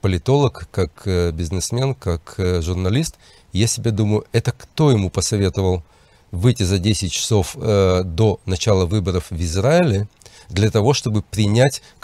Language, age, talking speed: English, 40-59, 125 wpm